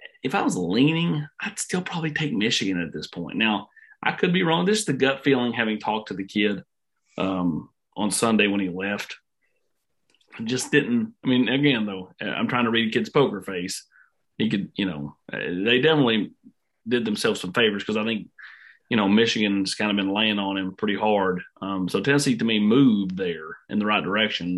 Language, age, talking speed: English, 30-49, 205 wpm